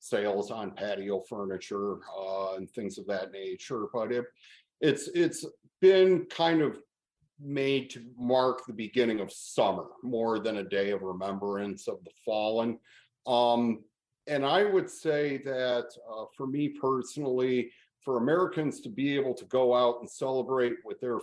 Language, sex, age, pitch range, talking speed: English, male, 40-59, 105-130 Hz, 155 wpm